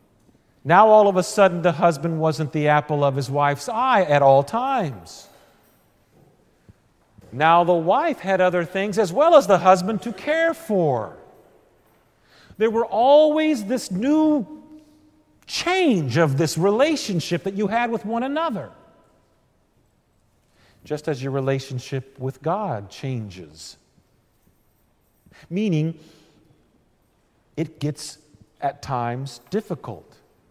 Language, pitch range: English, 135-195 Hz